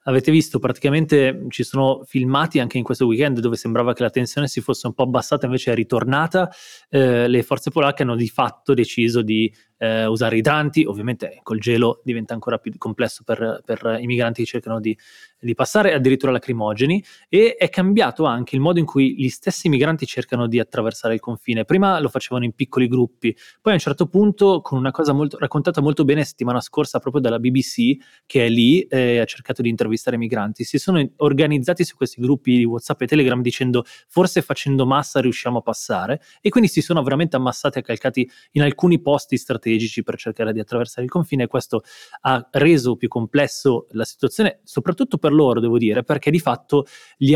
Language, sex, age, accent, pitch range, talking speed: Italian, male, 20-39, native, 120-150 Hz, 200 wpm